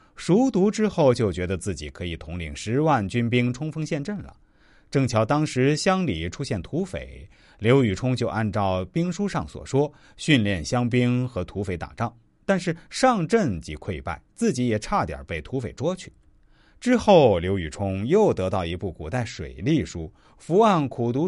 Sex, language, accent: male, Chinese, native